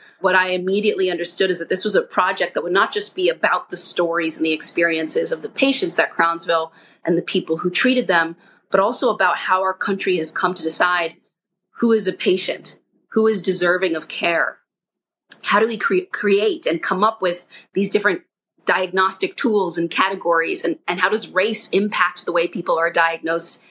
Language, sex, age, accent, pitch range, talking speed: English, female, 30-49, American, 175-215 Hz, 190 wpm